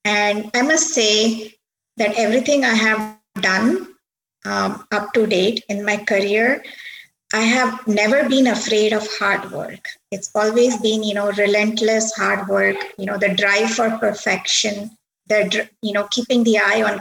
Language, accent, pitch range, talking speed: English, Indian, 200-230 Hz, 160 wpm